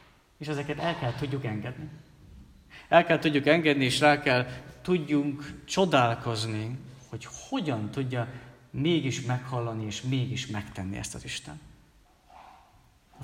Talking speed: 120 wpm